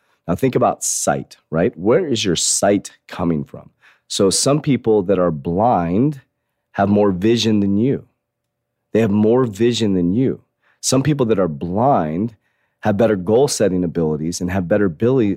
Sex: male